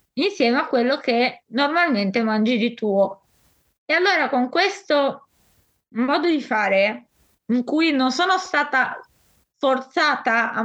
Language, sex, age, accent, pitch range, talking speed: Italian, female, 20-39, native, 230-265 Hz, 125 wpm